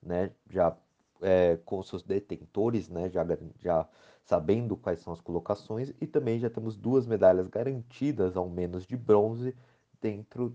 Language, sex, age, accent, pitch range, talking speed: Portuguese, male, 30-49, Brazilian, 90-120 Hz, 150 wpm